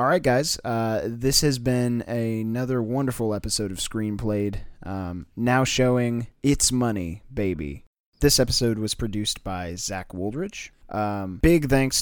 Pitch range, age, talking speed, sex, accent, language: 100-120 Hz, 30-49, 135 wpm, male, American, English